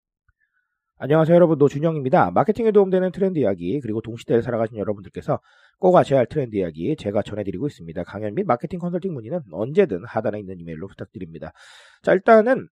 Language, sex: Korean, male